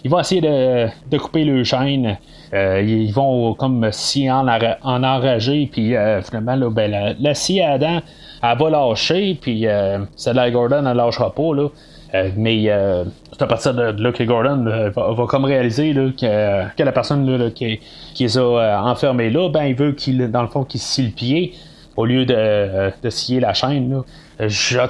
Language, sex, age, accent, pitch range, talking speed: French, male, 30-49, Canadian, 115-155 Hz, 215 wpm